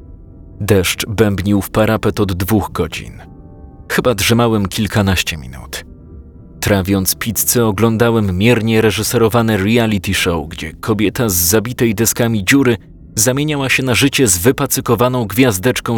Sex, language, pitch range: male, Polish, 90-115 Hz